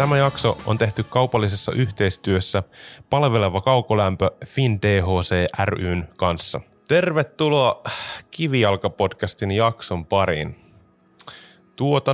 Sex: male